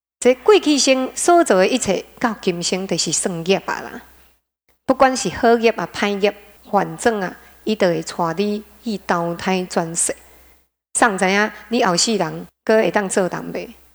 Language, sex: Chinese, female